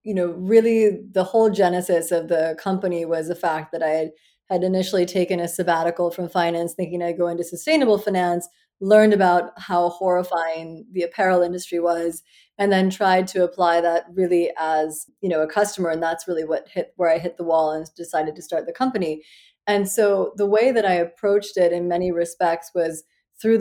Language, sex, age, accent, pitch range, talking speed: English, female, 20-39, American, 170-195 Hz, 195 wpm